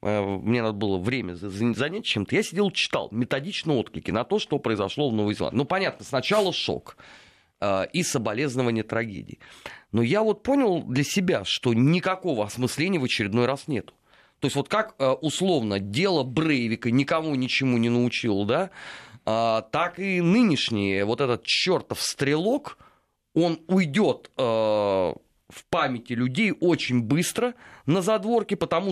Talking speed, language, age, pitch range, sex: 140 wpm, Russian, 30-49, 125-185 Hz, male